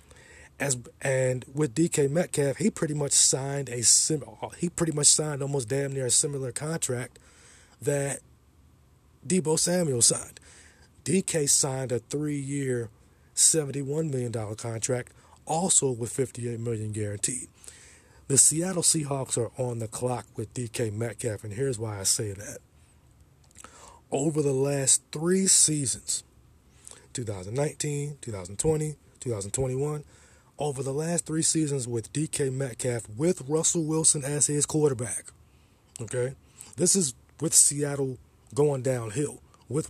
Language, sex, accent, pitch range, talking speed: English, male, American, 115-150 Hz, 125 wpm